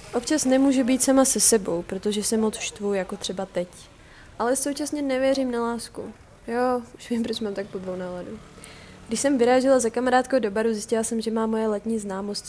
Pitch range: 200-250 Hz